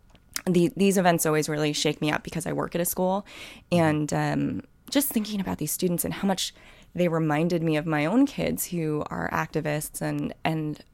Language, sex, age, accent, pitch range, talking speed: English, female, 20-39, American, 150-195 Hz, 195 wpm